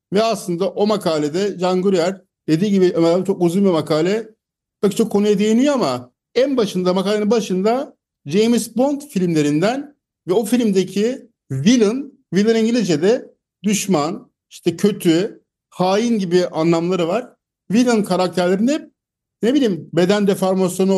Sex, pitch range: male, 175-235 Hz